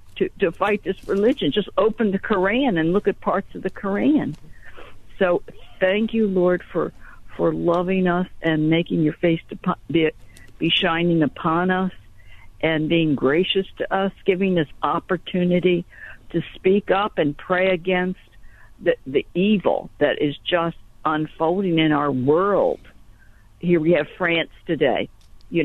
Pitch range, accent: 150-190 Hz, American